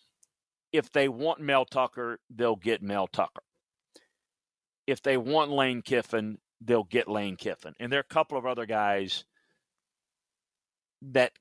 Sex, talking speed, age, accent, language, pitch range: male, 140 wpm, 40-59, American, English, 105-130 Hz